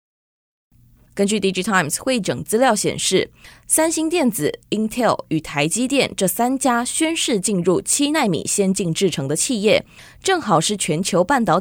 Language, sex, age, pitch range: Chinese, female, 20-39, 165-225 Hz